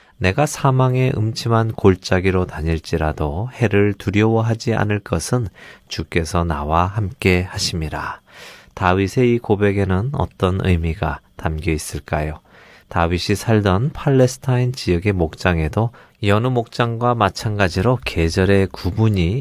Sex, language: male, Korean